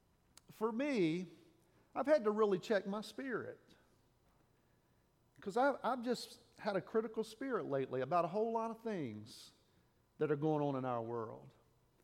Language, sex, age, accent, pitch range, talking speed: English, male, 50-69, American, 175-255 Hz, 155 wpm